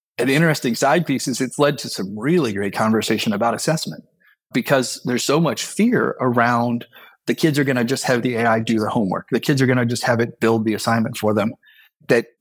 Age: 30-49